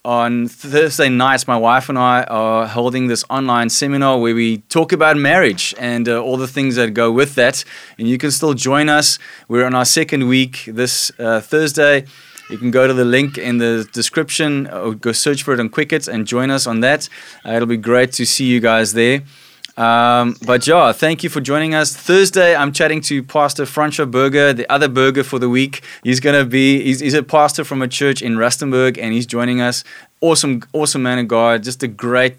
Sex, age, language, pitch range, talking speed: male, 20-39, English, 120-145 Hz, 215 wpm